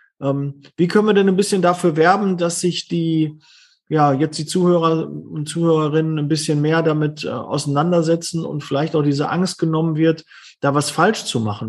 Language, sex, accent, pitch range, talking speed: German, male, German, 145-185 Hz, 175 wpm